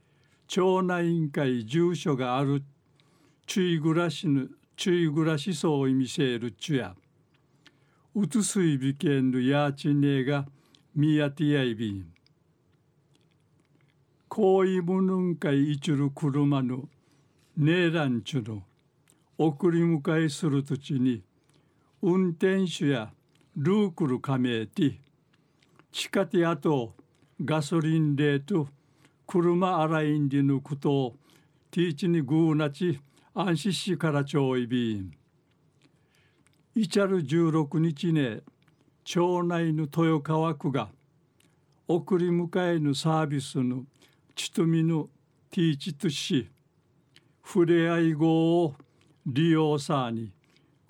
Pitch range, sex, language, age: 140-170 Hz, male, Japanese, 60-79